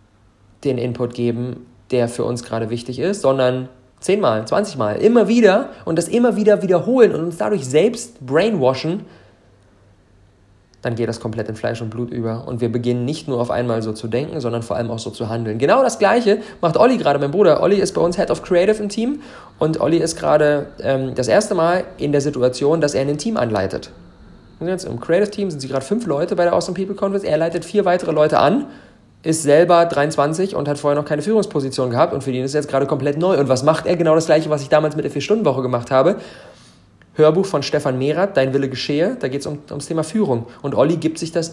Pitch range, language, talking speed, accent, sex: 120-170 Hz, German, 230 wpm, German, male